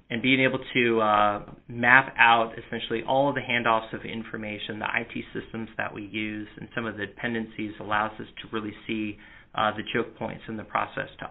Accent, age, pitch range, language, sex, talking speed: American, 30-49, 110-120 Hz, English, male, 200 wpm